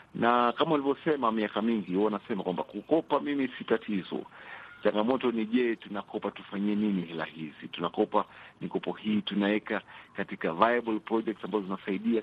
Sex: male